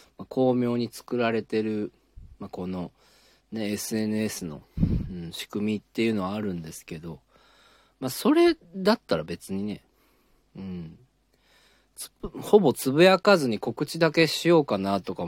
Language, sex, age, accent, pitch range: Japanese, male, 40-59, native, 90-120 Hz